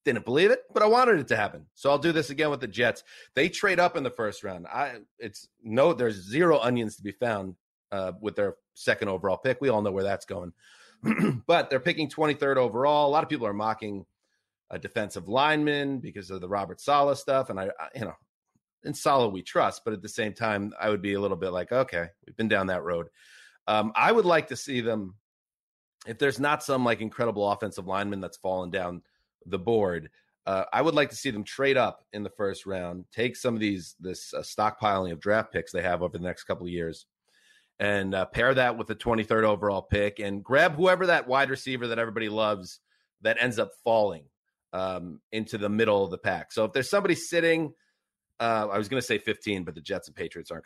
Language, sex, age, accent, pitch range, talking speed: English, male, 30-49, American, 100-140 Hz, 225 wpm